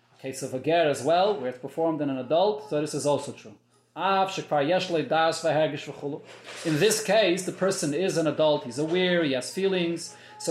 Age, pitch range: 30-49, 160-205 Hz